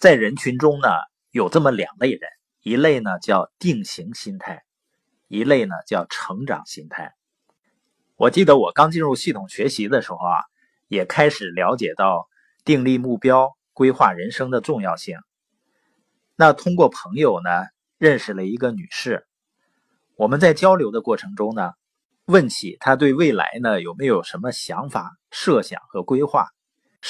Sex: male